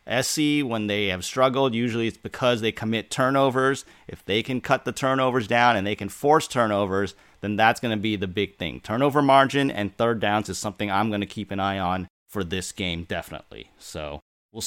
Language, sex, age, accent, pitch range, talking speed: English, male, 30-49, American, 105-135 Hz, 210 wpm